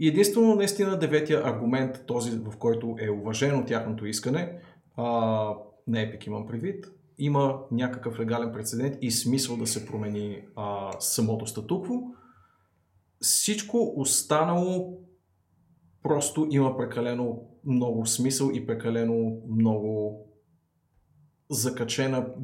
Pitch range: 105-135 Hz